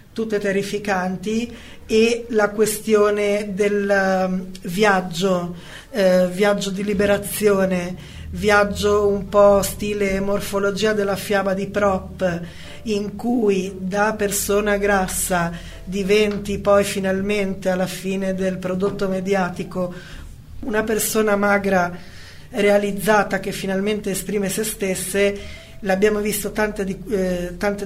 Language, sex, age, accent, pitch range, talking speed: Italian, female, 20-39, native, 185-205 Hz, 105 wpm